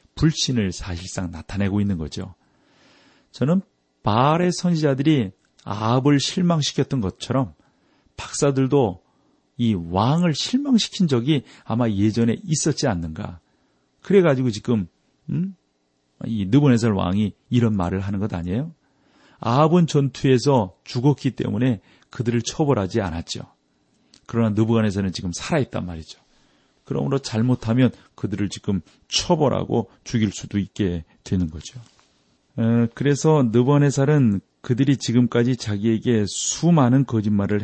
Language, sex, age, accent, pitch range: Korean, male, 40-59, native, 95-135 Hz